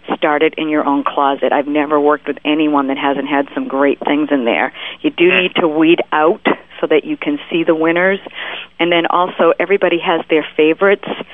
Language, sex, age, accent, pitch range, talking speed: English, female, 50-69, American, 145-170 Hz, 205 wpm